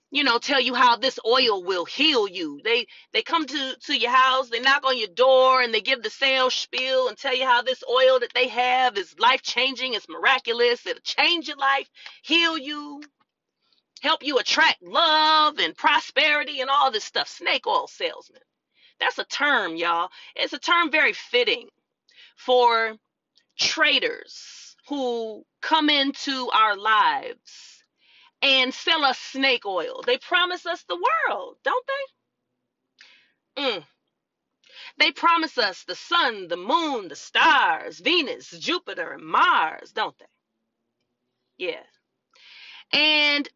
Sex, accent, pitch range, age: female, American, 260-415 Hz, 30-49